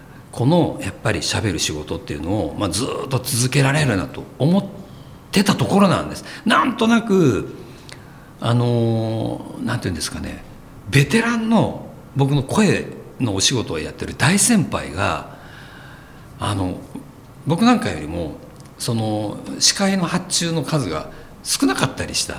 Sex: male